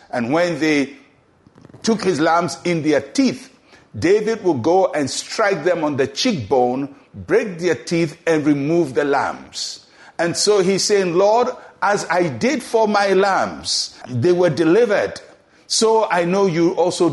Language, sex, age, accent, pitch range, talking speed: English, male, 60-79, Nigerian, 150-220 Hz, 155 wpm